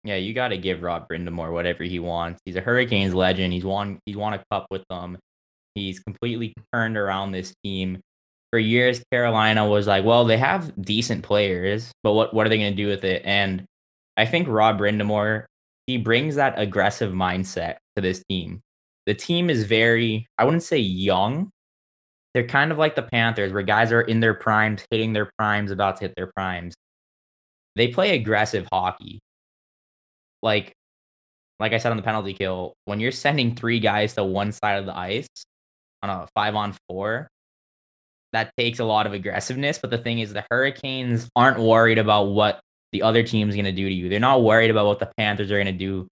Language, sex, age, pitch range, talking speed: English, male, 20-39, 95-115 Hz, 200 wpm